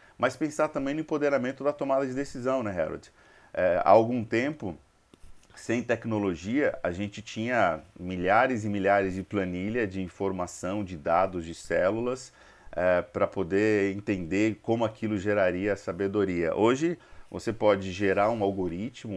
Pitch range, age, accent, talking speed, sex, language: 95-115 Hz, 40-59, Brazilian, 135 wpm, male, Portuguese